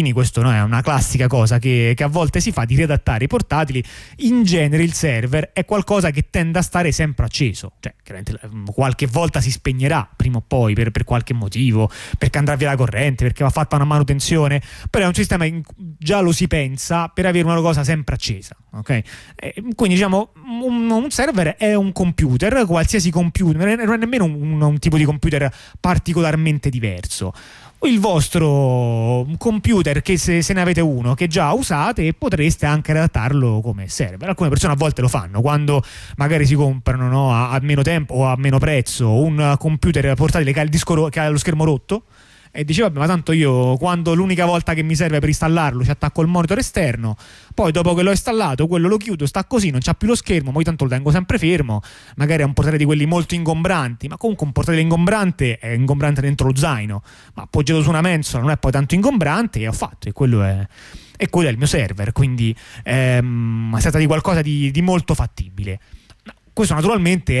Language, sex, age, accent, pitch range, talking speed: Italian, male, 30-49, native, 125-170 Hz, 200 wpm